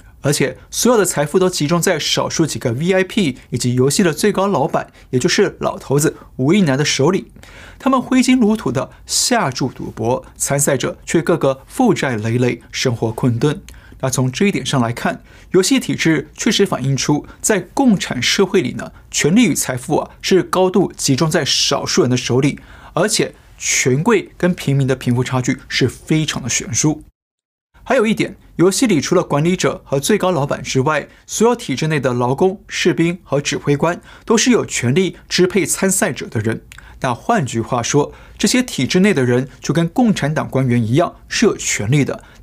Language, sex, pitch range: Chinese, male, 130-190 Hz